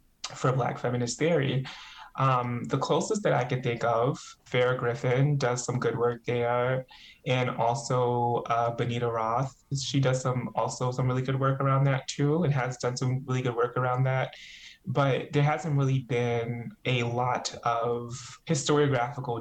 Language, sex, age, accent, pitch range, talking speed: English, male, 20-39, American, 120-135 Hz, 165 wpm